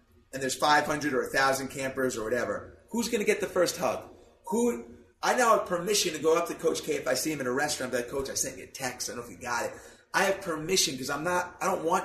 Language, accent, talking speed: English, American, 280 wpm